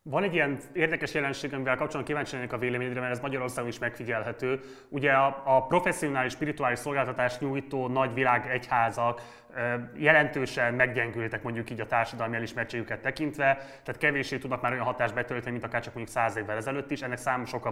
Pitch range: 120-140 Hz